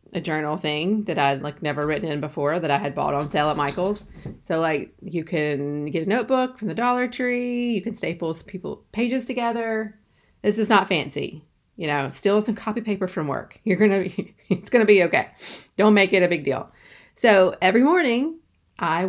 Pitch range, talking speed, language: 160-215 Hz, 210 wpm, English